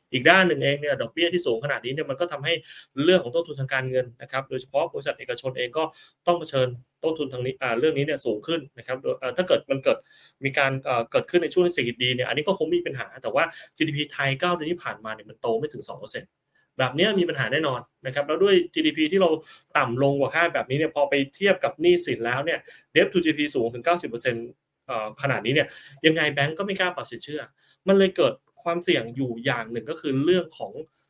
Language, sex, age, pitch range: Thai, male, 20-39, 130-165 Hz